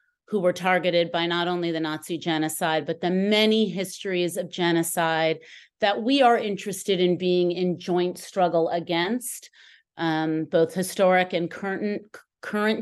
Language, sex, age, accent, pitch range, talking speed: English, female, 30-49, American, 165-200 Hz, 145 wpm